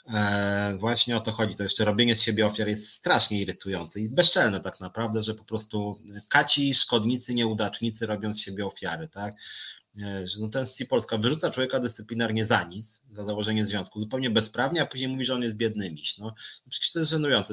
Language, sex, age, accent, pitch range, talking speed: Polish, male, 30-49, native, 105-130 Hz, 200 wpm